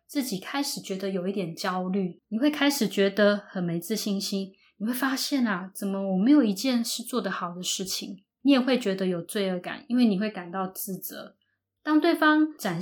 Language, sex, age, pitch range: Chinese, female, 20-39, 190-245 Hz